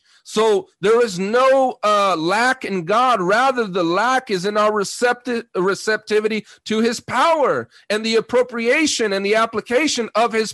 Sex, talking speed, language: male, 155 wpm, English